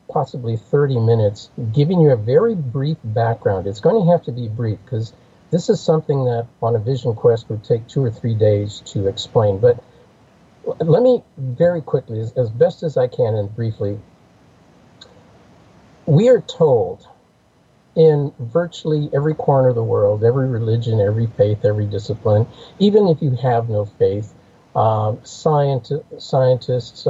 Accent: American